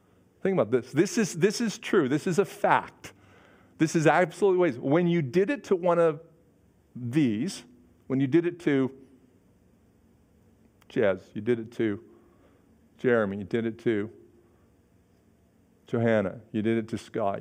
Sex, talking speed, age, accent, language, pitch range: male, 150 wpm, 50-69, American, English, 110-155 Hz